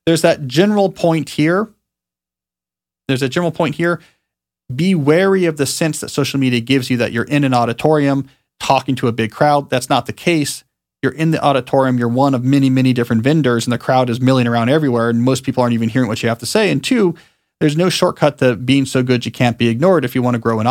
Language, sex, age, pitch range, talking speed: English, male, 40-59, 115-150 Hz, 240 wpm